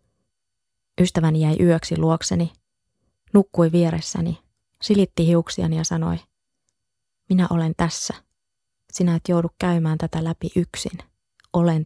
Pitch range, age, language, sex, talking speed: 160-175 Hz, 20-39, Finnish, female, 105 wpm